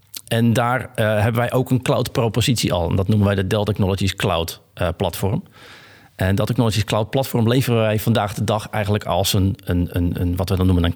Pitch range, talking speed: 100-120 Hz, 235 wpm